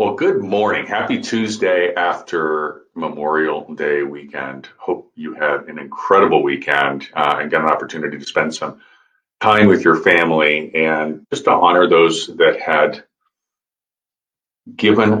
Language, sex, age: English, male, 40-59